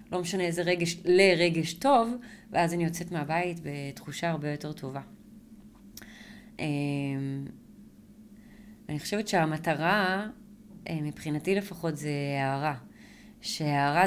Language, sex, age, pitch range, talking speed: Hebrew, female, 20-39, 145-180 Hz, 95 wpm